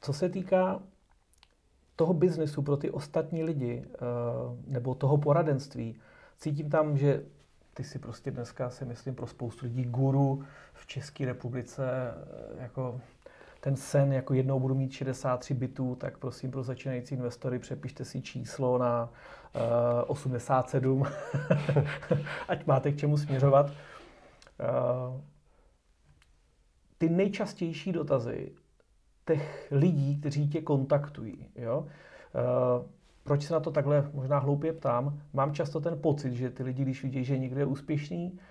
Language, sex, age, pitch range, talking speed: Czech, male, 30-49, 130-150 Hz, 125 wpm